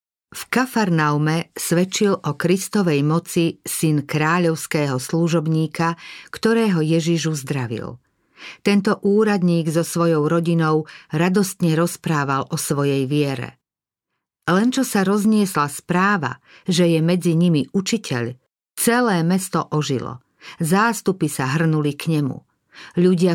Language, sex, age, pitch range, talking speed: Slovak, female, 50-69, 155-185 Hz, 105 wpm